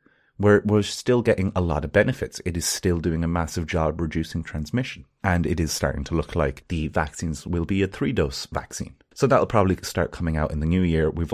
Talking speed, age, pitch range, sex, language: 230 wpm, 30-49, 80-100 Hz, male, English